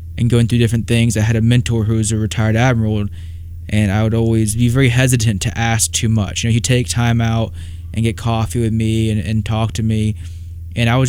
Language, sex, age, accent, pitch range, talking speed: English, male, 20-39, American, 95-125 Hz, 240 wpm